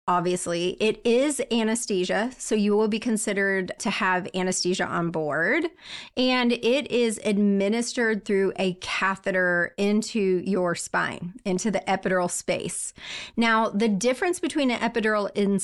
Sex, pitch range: female, 190-235 Hz